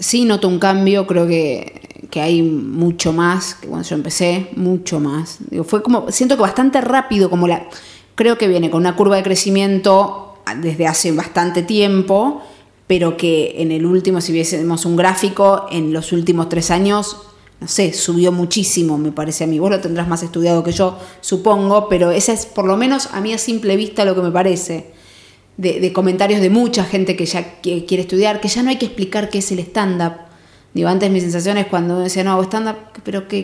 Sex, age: female, 20-39